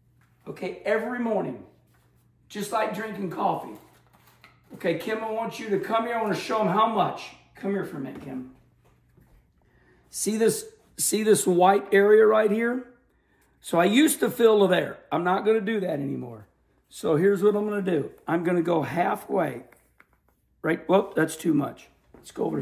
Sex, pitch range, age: male, 175-235 Hz, 50-69